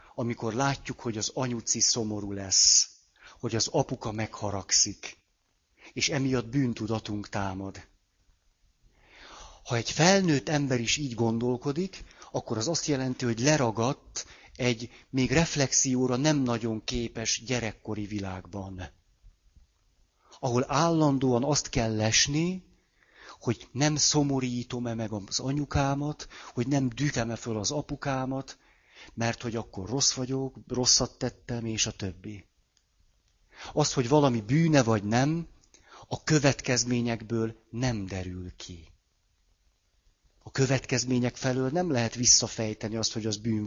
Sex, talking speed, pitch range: male, 115 wpm, 105-135 Hz